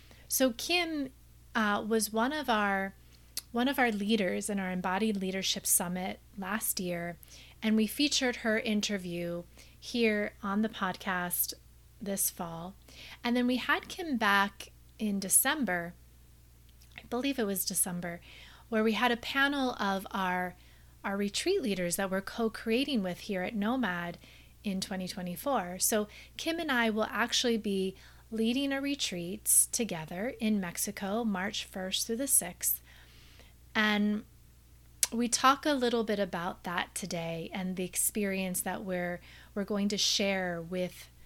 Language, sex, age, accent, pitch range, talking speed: English, female, 30-49, American, 185-235 Hz, 145 wpm